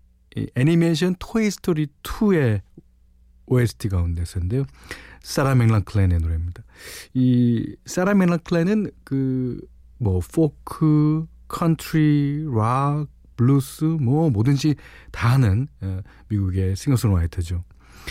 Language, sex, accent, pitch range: Korean, male, native, 100-150 Hz